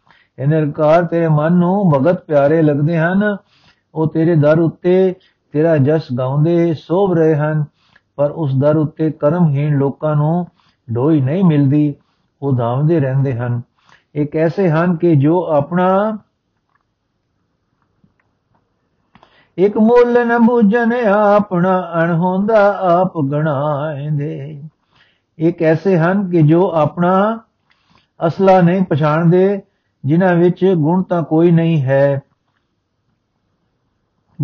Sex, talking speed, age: male, 95 wpm, 60-79